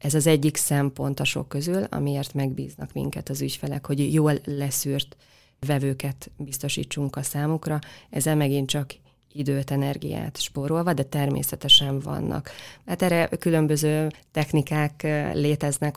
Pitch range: 140-155 Hz